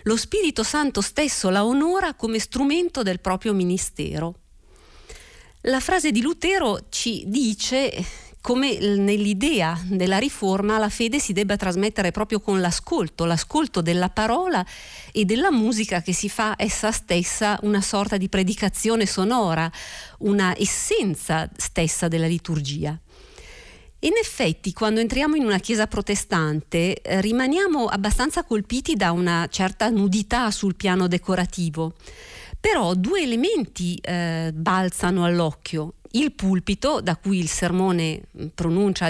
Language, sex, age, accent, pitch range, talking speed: Italian, female, 50-69, native, 175-230 Hz, 125 wpm